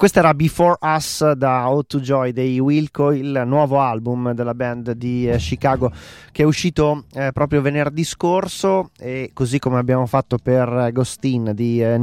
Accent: native